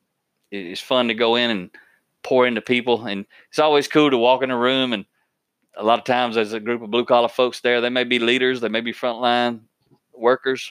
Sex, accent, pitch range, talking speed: male, American, 110-130 Hz, 225 wpm